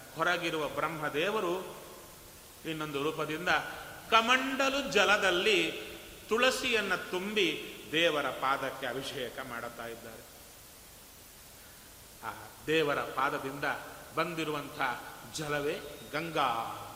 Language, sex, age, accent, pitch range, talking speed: Kannada, male, 30-49, native, 150-225 Hz, 70 wpm